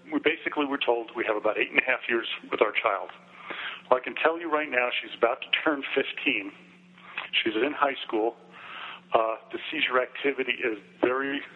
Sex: male